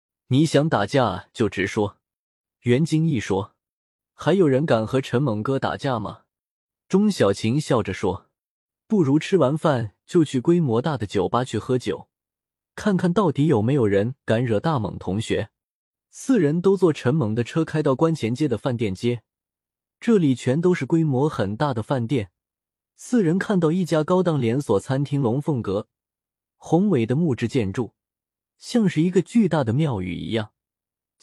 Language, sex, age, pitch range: Chinese, male, 20-39, 110-160 Hz